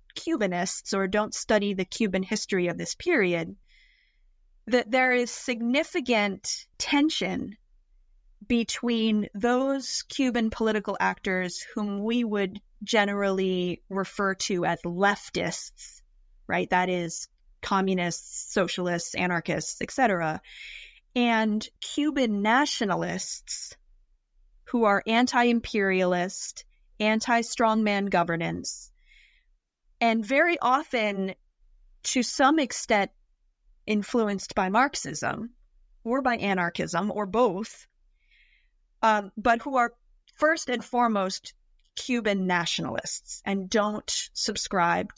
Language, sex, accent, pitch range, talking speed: English, female, American, 190-240 Hz, 90 wpm